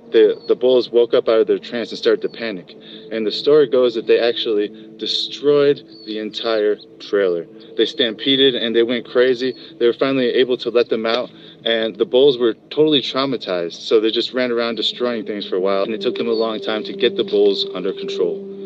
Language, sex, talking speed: English, male, 215 wpm